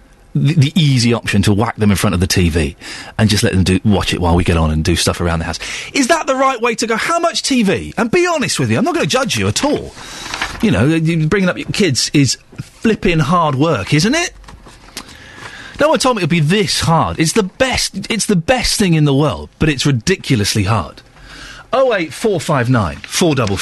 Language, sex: English, male